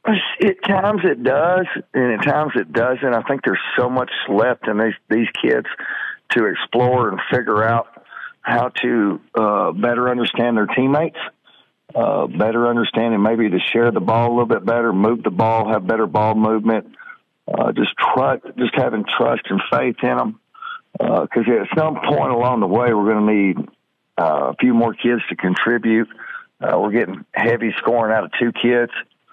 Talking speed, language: 180 wpm, English